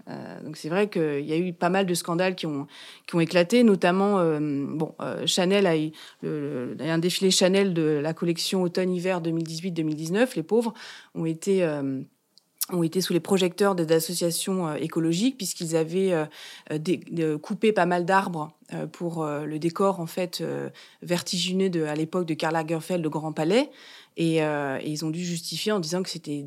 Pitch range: 160-190 Hz